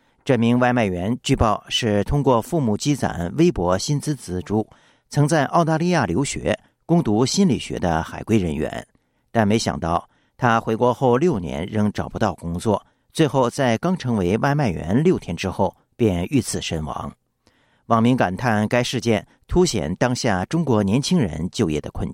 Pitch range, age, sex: 95-140 Hz, 50-69, male